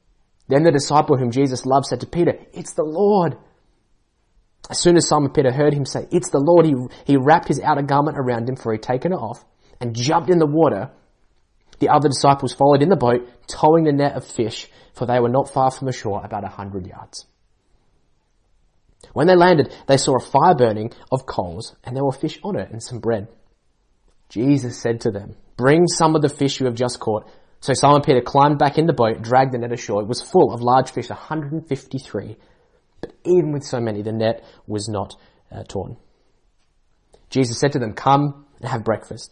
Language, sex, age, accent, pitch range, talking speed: English, male, 20-39, Australian, 110-145 Hz, 205 wpm